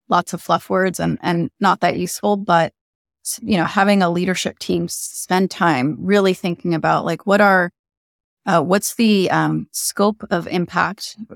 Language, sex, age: English, female, 30-49